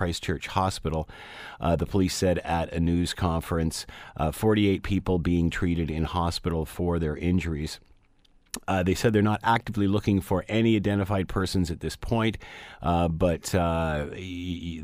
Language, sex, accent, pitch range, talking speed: English, male, American, 80-90 Hz, 150 wpm